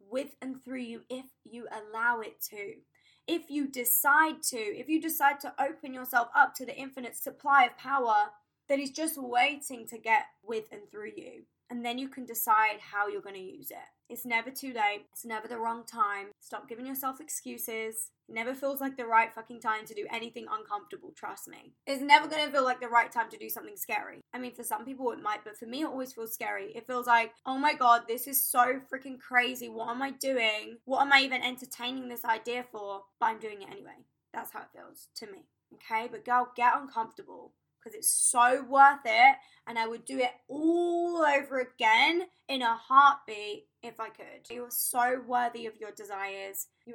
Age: 20-39